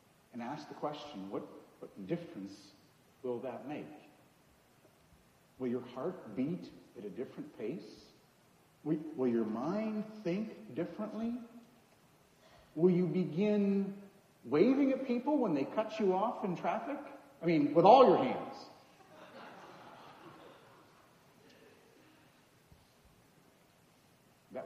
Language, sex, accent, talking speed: English, male, American, 105 wpm